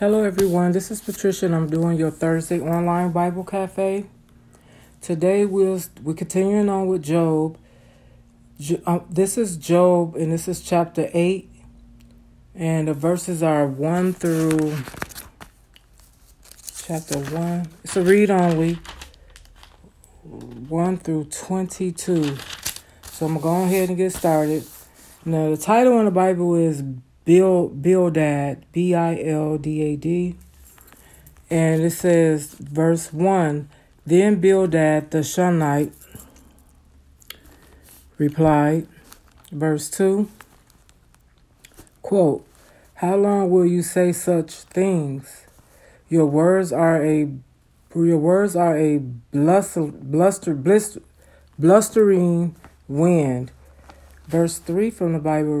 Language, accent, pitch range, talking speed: English, American, 145-180 Hz, 115 wpm